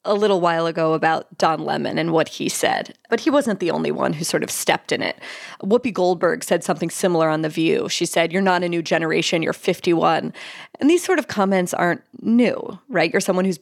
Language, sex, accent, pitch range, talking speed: English, female, American, 175-230 Hz, 225 wpm